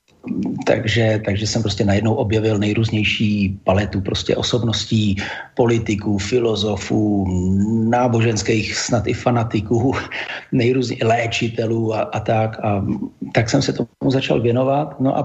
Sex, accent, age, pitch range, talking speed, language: male, native, 40-59, 110-130 Hz, 105 wpm, Czech